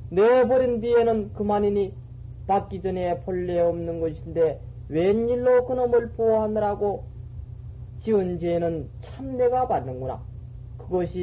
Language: Korean